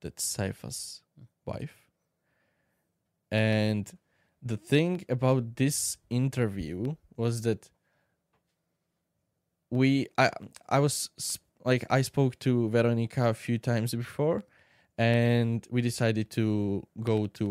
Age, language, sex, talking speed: 10-29, Slovak, male, 105 wpm